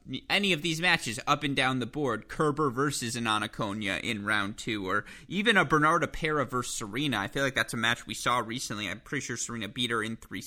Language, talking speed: English, 225 wpm